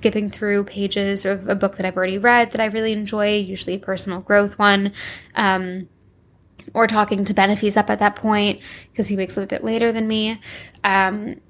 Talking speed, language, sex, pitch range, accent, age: 200 wpm, English, female, 190-215 Hz, American, 10-29